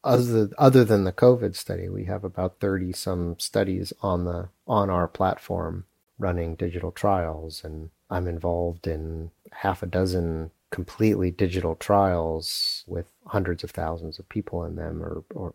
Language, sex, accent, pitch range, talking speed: English, male, American, 85-100 Hz, 145 wpm